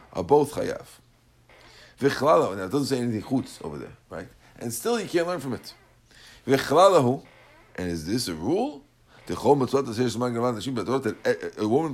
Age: 50-69